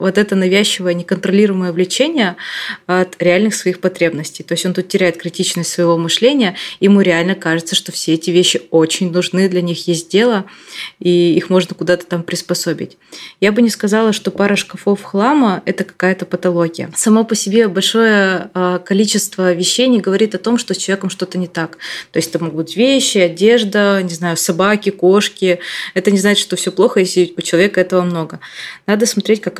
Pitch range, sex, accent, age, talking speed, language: 175-195 Hz, female, native, 20-39, 180 wpm, Russian